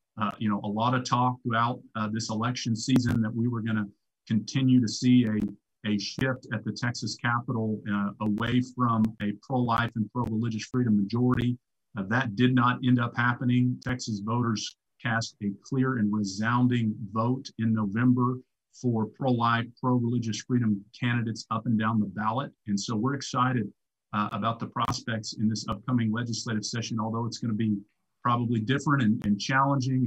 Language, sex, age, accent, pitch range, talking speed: English, male, 40-59, American, 110-125 Hz, 170 wpm